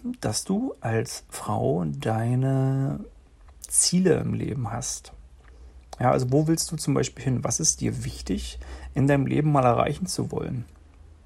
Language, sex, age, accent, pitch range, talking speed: German, male, 40-59, German, 110-150 Hz, 150 wpm